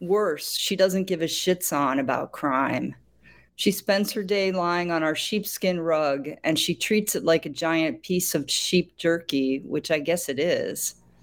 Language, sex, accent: English, female, American